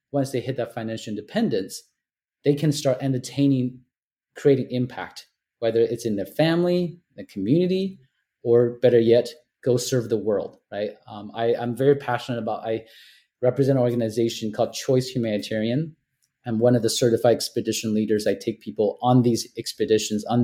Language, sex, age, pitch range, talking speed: English, male, 30-49, 110-135 Hz, 155 wpm